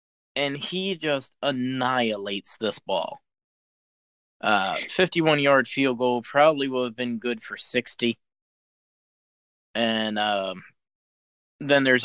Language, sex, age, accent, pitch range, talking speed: English, male, 20-39, American, 105-135 Hz, 105 wpm